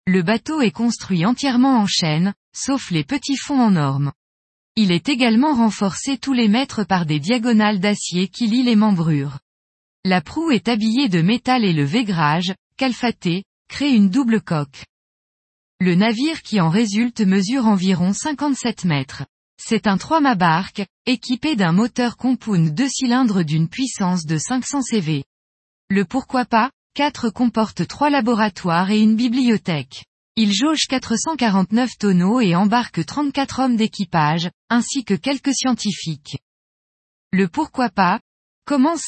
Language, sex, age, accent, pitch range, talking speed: French, female, 20-39, French, 180-250 Hz, 145 wpm